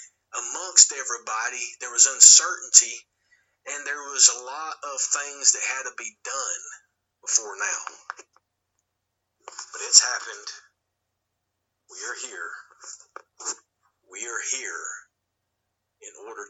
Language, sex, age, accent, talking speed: English, male, 40-59, American, 110 wpm